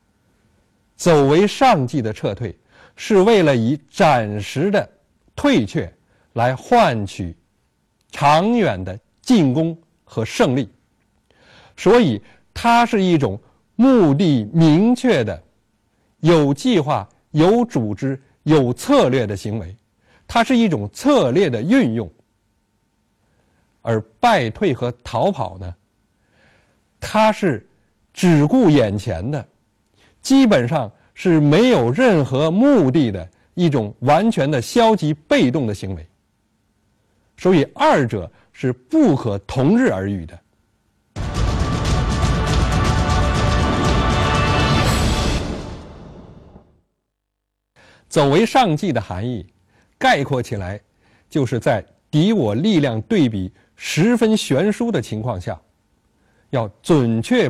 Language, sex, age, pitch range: Chinese, male, 50-69, 100-160 Hz